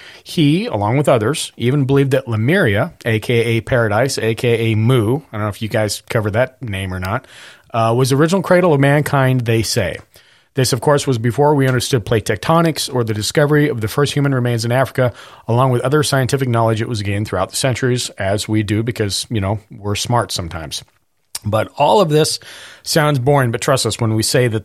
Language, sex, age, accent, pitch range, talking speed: English, male, 40-59, American, 110-145 Hz, 205 wpm